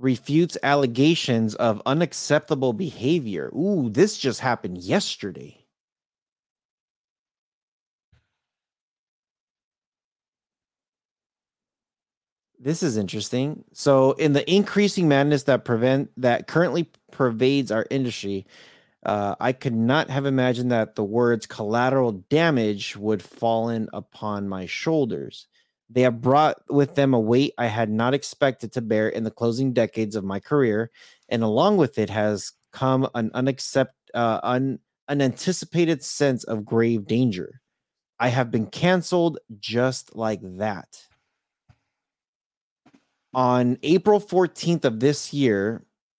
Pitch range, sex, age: 115-145 Hz, male, 30-49